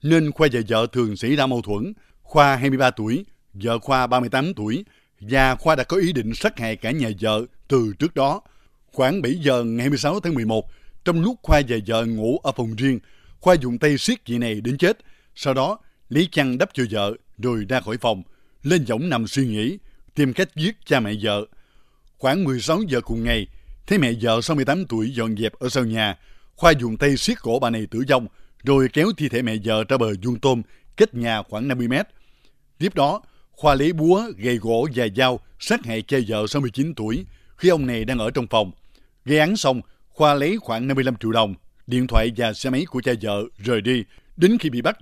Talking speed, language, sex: 215 wpm, Vietnamese, male